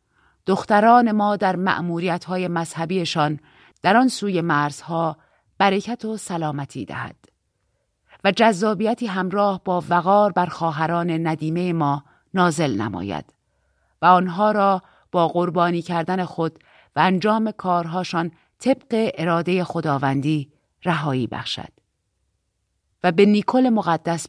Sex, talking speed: female, 105 wpm